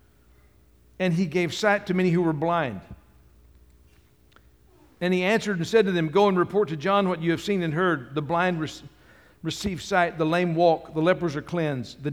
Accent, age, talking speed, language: American, 60-79, 195 wpm, English